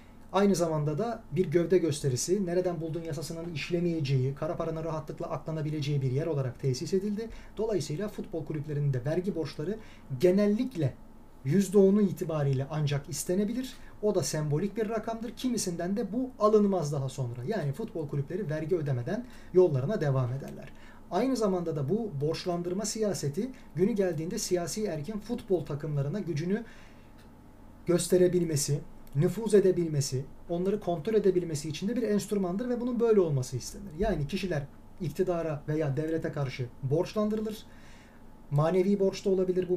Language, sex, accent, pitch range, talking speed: Turkish, male, native, 145-195 Hz, 135 wpm